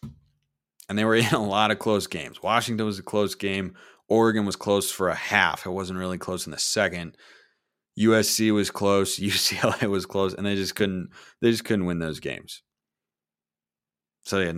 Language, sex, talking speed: English, male, 185 wpm